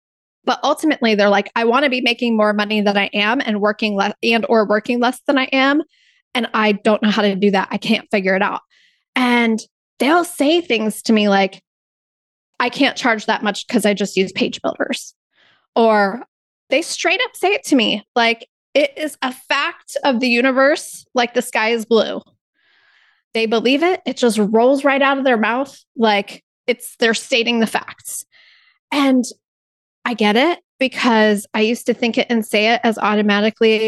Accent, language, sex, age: American, English, female, 20-39